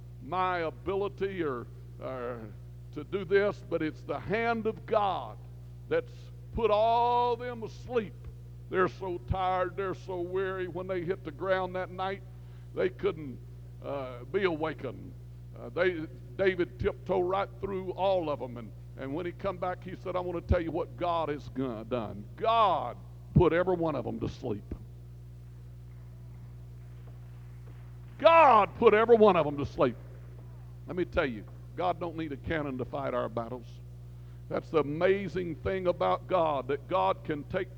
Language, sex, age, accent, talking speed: English, male, 60-79, American, 160 wpm